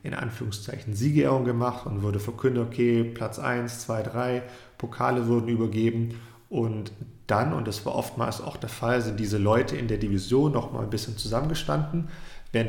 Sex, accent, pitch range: male, German, 105-125 Hz